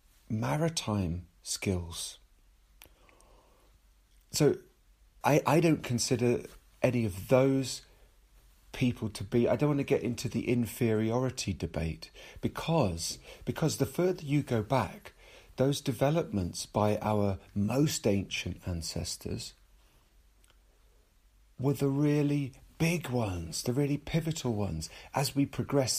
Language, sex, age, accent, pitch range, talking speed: English, male, 40-59, British, 90-125 Hz, 110 wpm